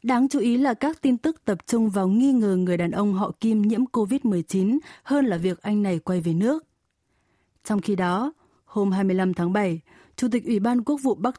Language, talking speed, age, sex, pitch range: Vietnamese, 215 wpm, 20-39, female, 195-255 Hz